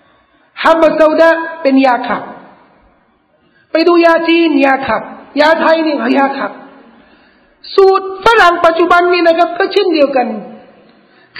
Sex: male